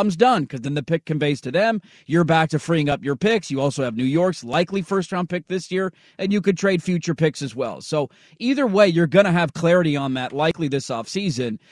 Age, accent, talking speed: 30-49, American, 235 wpm